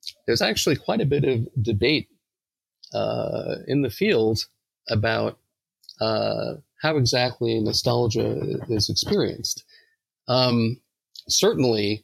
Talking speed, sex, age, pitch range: 100 wpm, male, 40-59, 110-125 Hz